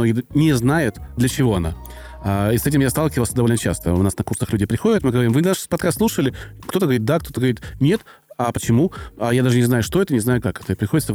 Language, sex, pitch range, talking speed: Russian, male, 110-145 Hz, 235 wpm